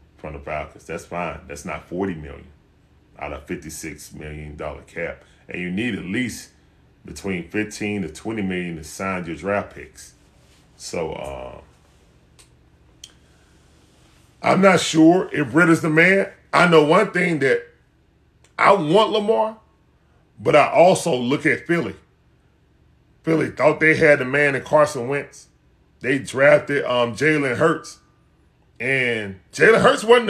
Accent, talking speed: American, 140 wpm